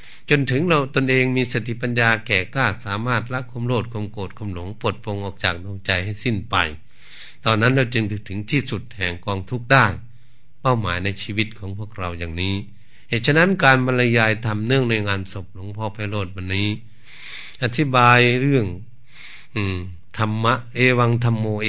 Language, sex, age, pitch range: Thai, male, 60-79, 95-120 Hz